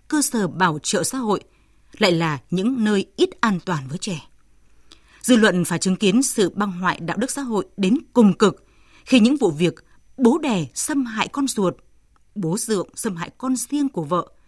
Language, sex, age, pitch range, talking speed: Vietnamese, female, 20-39, 175-240 Hz, 200 wpm